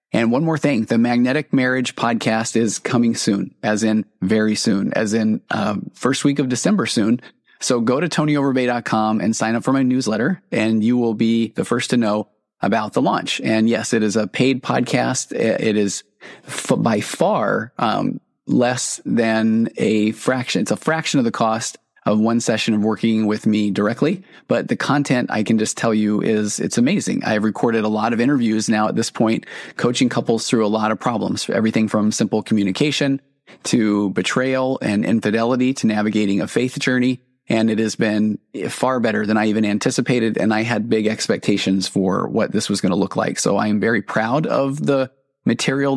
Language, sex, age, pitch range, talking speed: English, male, 30-49, 110-130 Hz, 190 wpm